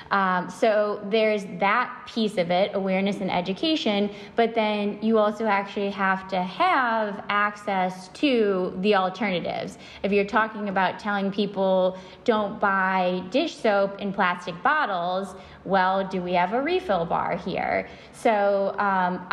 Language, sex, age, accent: English, female, 10-29, American